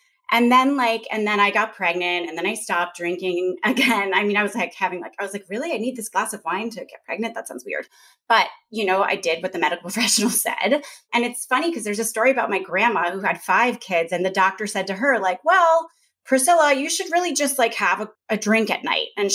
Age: 20-39